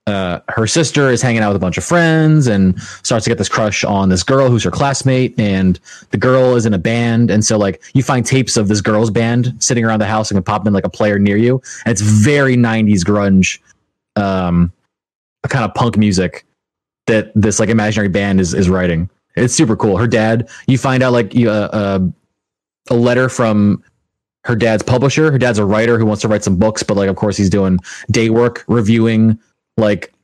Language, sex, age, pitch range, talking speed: English, male, 20-39, 100-125 Hz, 215 wpm